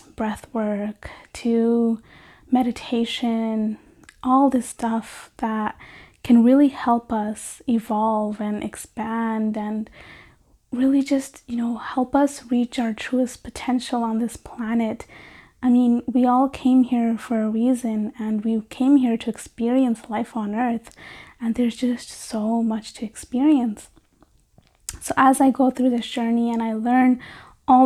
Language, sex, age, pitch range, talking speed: English, female, 20-39, 225-260 Hz, 140 wpm